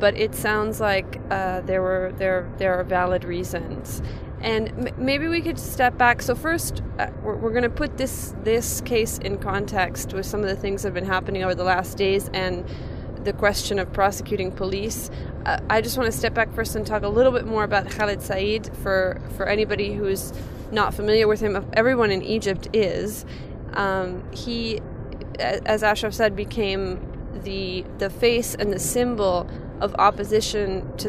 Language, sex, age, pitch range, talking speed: English, female, 20-39, 185-215 Hz, 180 wpm